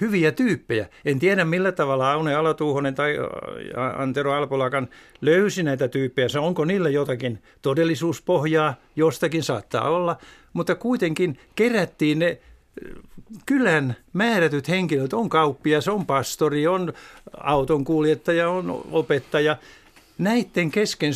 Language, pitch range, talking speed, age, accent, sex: Finnish, 125-165 Hz, 110 wpm, 60-79, native, male